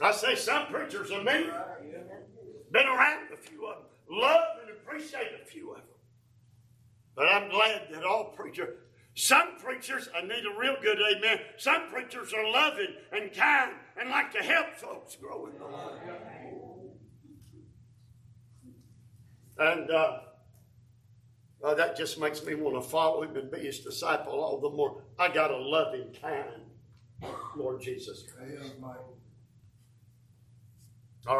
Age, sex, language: 50-69, male, English